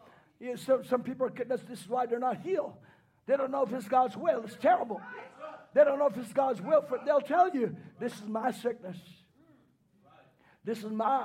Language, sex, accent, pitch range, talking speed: English, male, American, 225-290 Hz, 195 wpm